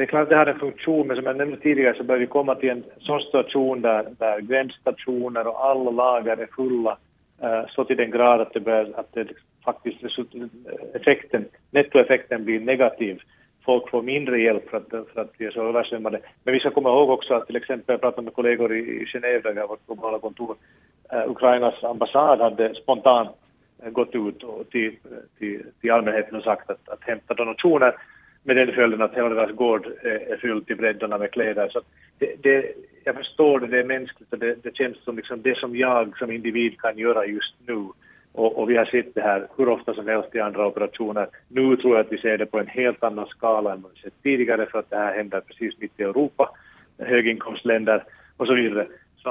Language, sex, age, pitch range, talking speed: Swedish, male, 40-59, 110-130 Hz, 210 wpm